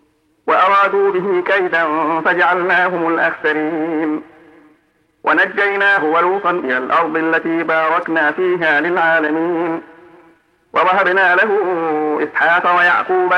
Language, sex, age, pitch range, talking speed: Arabic, male, 50-69, 160-185 Hz, 75 wpm